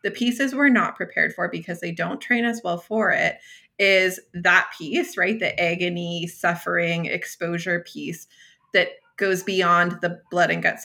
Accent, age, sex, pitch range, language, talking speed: American, 20-39, female, 175-220 Hz, English, 165 wpm